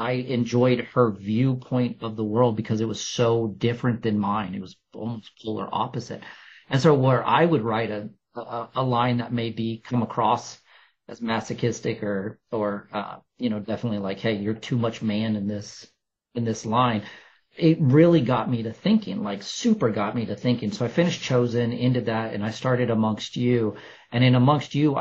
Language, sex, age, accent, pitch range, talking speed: English, male, 40-59, American, 110-125 Hz, 190 wpm